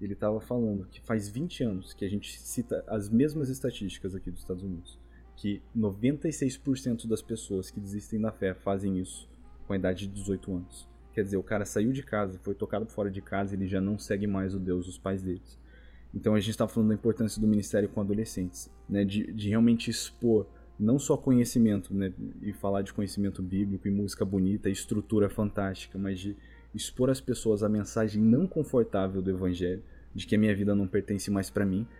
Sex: male